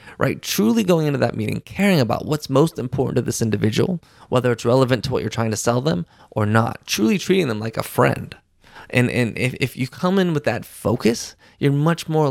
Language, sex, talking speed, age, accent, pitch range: English, male, 220 wpm, 20-39, American, 110-140 Hz